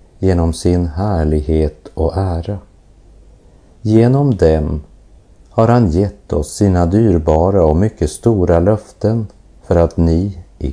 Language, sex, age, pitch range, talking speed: English, male, 50-69, 80-100 Hz, 115 wpm